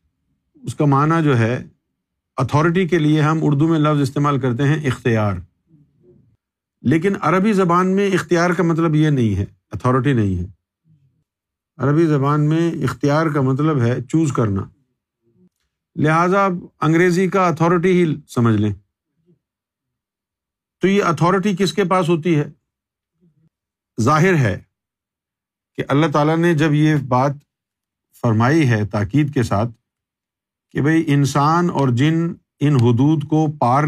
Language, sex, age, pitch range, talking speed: Urdu, male, 50-69, 120-160 Hz, 135 wpm